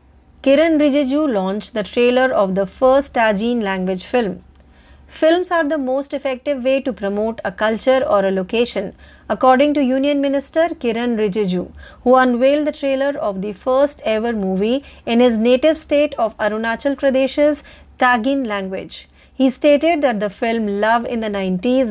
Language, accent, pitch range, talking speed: Marathi, native, 210-275 Hz, 155 wpm